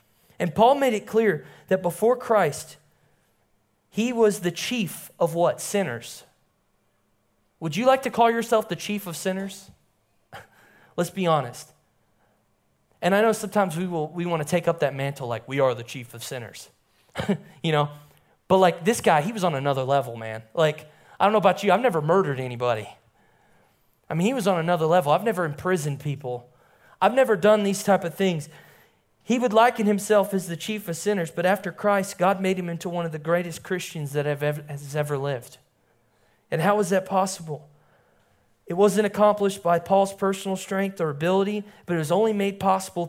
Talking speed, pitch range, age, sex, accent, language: 185 wpm, 140-195 Hz, 20-39, male, American, English